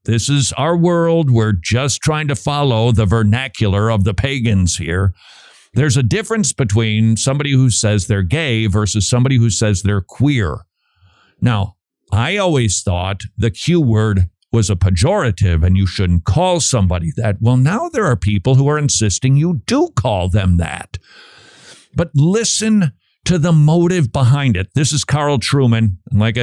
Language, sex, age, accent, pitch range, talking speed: English, male, 50-69, American, 100-135 Hz, 160 wpm